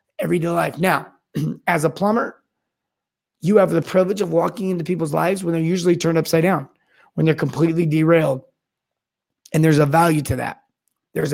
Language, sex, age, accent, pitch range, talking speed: English, male, 30-49, American, 160-190 Hz, 170 wpm